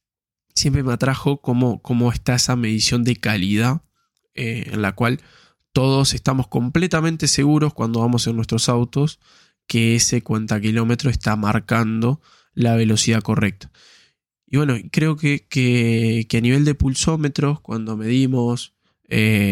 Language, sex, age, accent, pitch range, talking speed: Spanish, male, 10-29, Argentinian, 110-130 Hz, 135 wpm